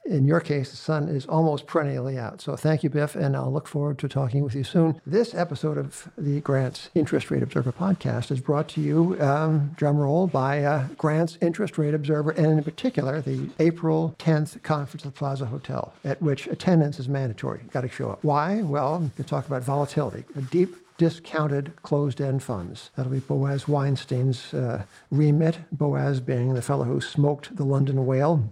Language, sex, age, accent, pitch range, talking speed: English, male, 60-79, American, 130-155 Hz, 185 wpm